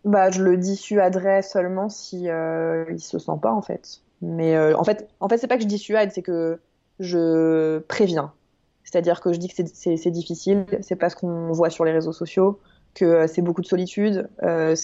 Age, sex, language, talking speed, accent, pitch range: 20-39, female, French, 220 wpm, French, 165-200 Hz